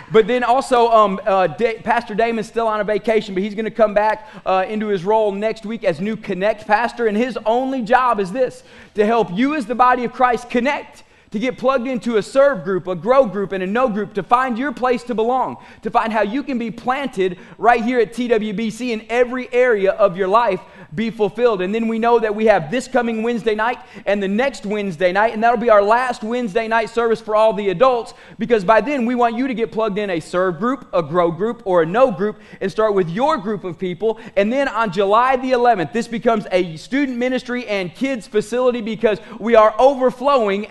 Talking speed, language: 225 wpm, English